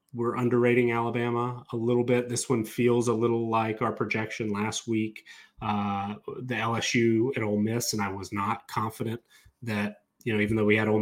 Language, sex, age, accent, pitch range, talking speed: English, male, 30-49, American, 110-125 Hz, 190 wpm